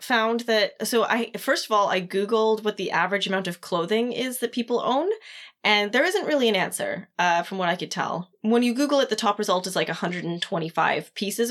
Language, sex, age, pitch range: English, female, 20-39, 185-230 Hz